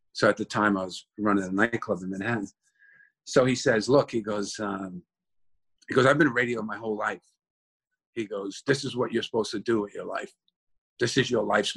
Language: English